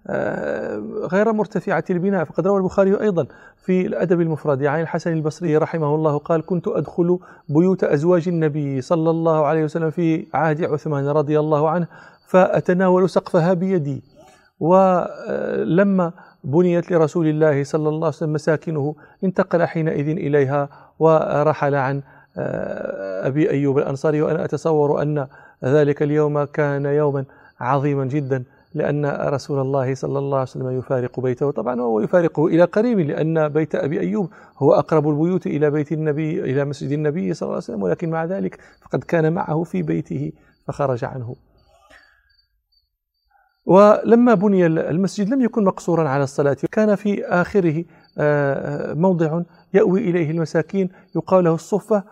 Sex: male